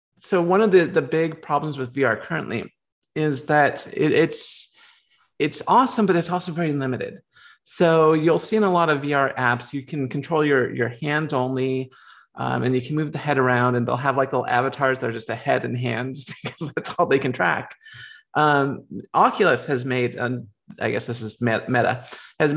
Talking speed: 200 wpm